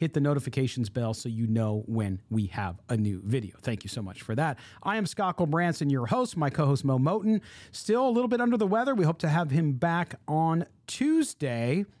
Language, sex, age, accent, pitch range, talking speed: English, male, 40-59, American, 120-165 Hz, 220 wpm